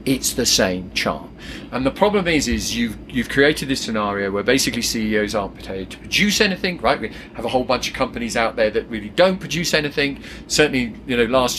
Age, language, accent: 40-59, English, British